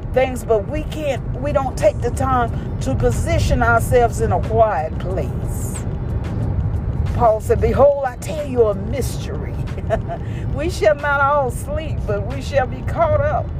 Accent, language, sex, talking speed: American, English, female, 155 wpm